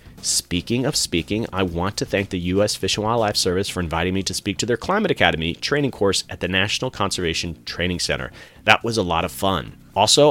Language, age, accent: English, 30-49, American